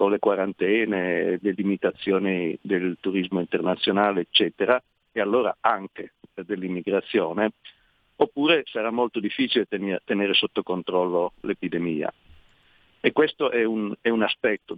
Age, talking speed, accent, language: 50-69, 110 wpm, native, Italian